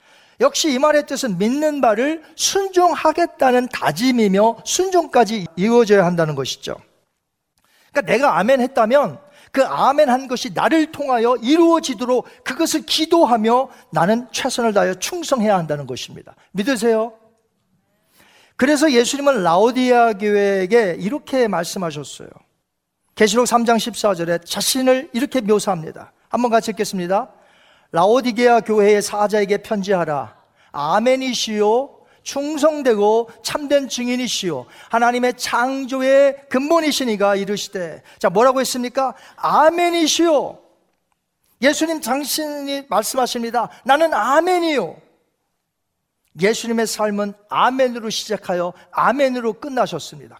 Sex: male